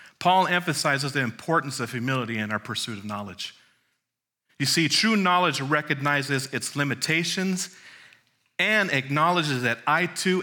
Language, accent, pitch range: English, American, 115-170 Hz